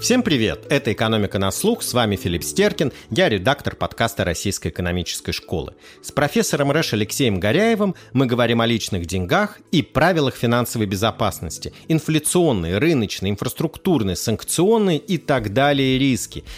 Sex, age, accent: male, 30-49, native